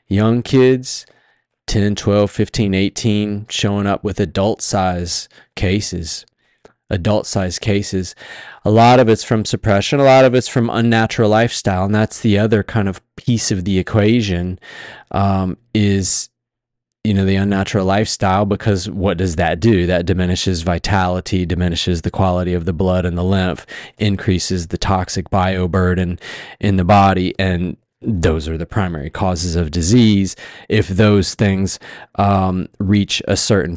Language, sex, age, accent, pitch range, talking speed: English, male, 20-39, American, 95-110 Hz, 150 wpm